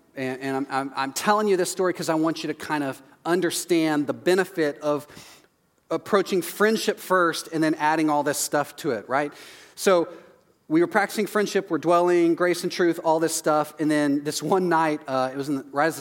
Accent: American